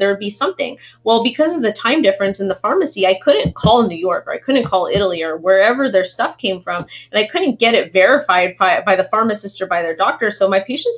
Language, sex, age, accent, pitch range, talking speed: English, female, 30-49, American, 185-230 Hz, 245 wpm